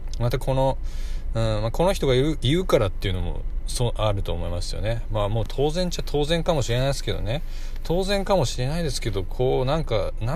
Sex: male